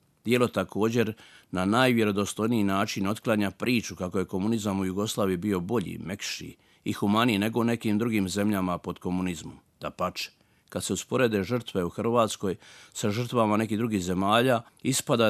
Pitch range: 100-120 Hz